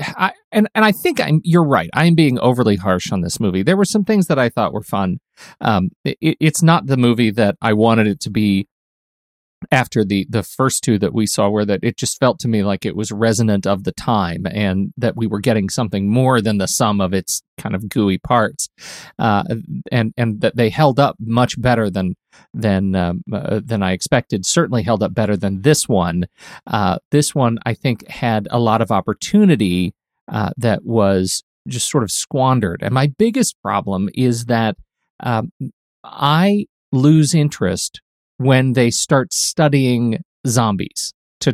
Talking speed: 190 wpm